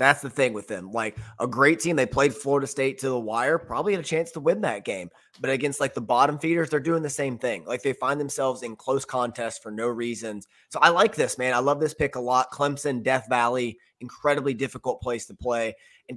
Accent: American